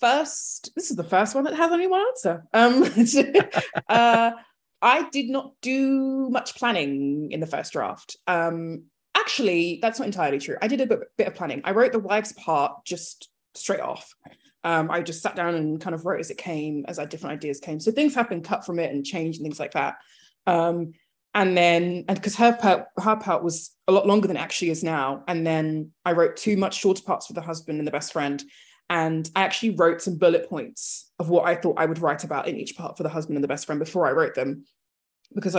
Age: 20-39